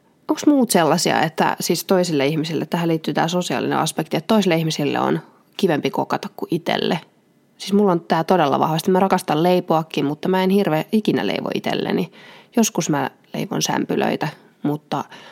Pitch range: 165-200 Hz